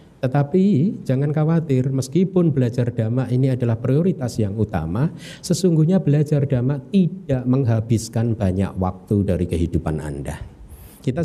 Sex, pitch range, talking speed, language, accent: male, 95-145 Hz, 115 wpm, Indonesian, native